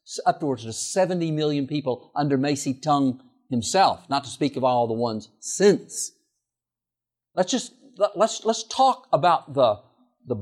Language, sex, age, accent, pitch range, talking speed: English, male, 50-69, American, 135-225 Hz, 145 wpm